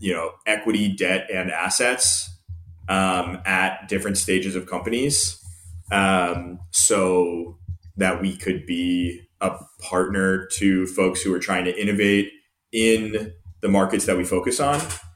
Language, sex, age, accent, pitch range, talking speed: English, male, 30-49, American, 90-105 Hz, 135 wpm